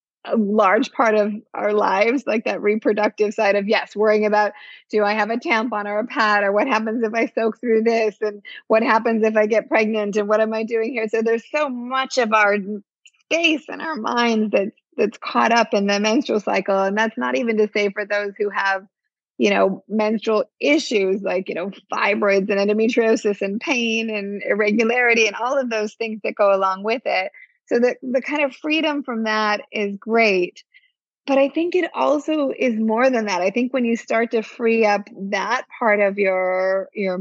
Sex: female